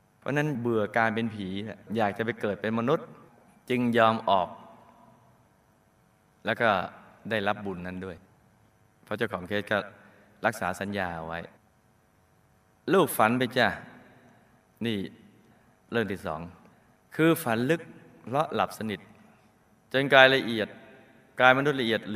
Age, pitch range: 20-39, 105-140 Hz